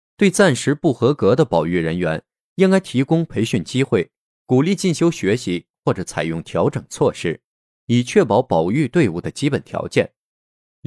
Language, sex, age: Chinese, male, 20-39